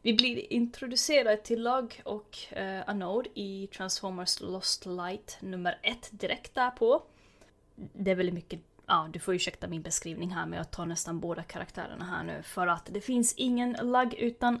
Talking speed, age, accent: 175 wpm, 20-39, native